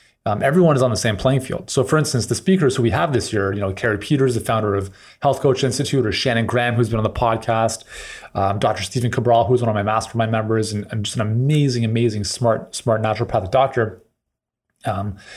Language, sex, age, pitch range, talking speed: English, male, 30-49, 115-145 Hz, 220 wpm